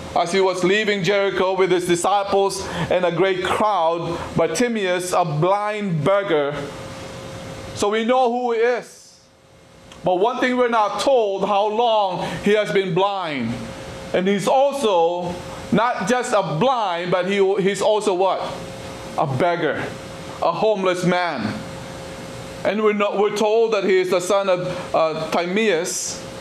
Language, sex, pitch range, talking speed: English, male, 175-210 Hz, 150 wpm